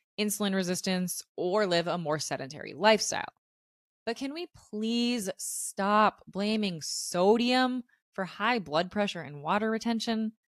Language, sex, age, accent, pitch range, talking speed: English, female, 20-39, American, 165-230 Hz, 125 wpm